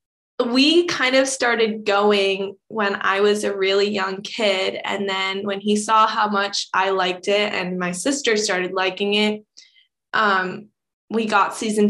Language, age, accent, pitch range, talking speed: English, 20-39, American, 195-210 Hz, 160 wpm